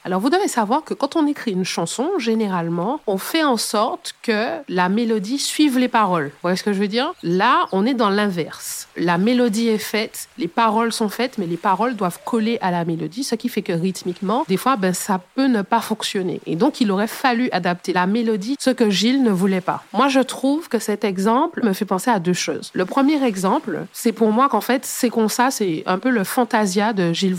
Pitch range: 190-250 Hz